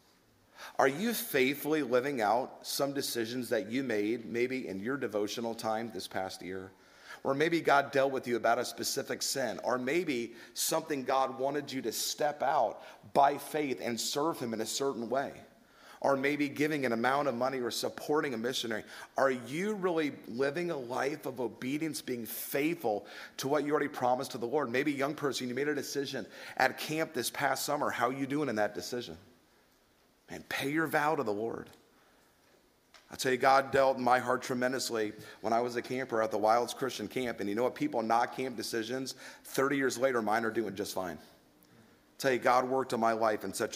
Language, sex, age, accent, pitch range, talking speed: English, male, 30-49, American, 115-140 Hz, 200 wpm